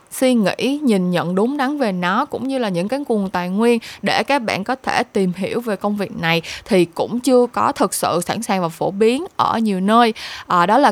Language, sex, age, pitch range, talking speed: Vietnamese, female, 20-39, 180-245 Hz, 235 wpm